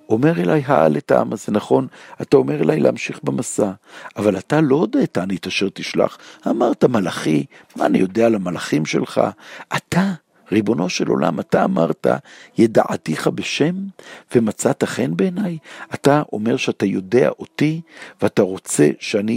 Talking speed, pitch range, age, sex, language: 140 wpm, 100-120 Hz, 60-79, male, Hebrew